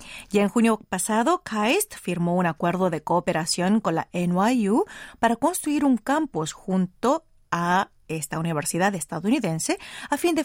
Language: Spanish